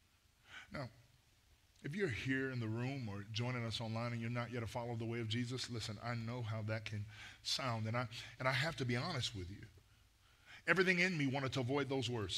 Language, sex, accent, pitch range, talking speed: English, male, American, 105-135 Hz, 225 wpm